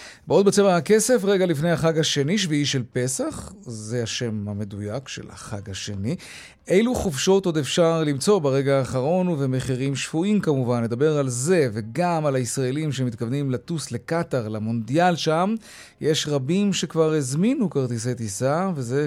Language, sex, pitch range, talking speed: Hebrew, male, 125-175 Hz, 140 wpm